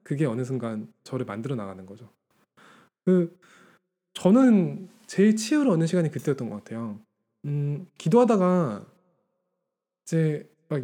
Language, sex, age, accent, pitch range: Korean, male, 20-39, native, 125-205 Hz